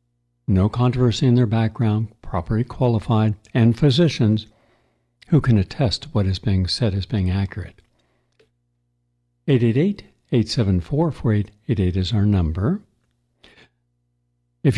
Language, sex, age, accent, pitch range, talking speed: English, male, 60-79, American, 95-125 Hz, 100 wpm